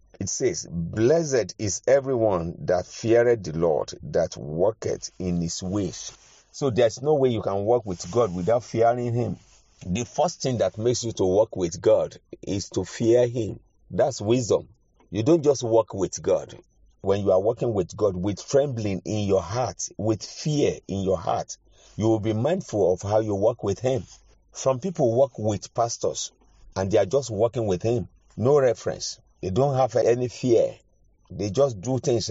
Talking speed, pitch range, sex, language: 180 wpm, 100-135 Hz, male, English